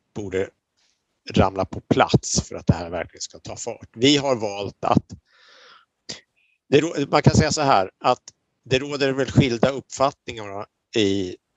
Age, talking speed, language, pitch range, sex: 60-79, 145 wpm, Swedish, 95-115 Hz, male